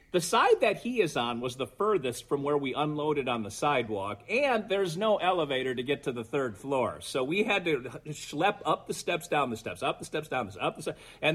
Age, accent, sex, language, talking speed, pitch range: 40-59, American, male, English, 250 wpm, 125-175 Hz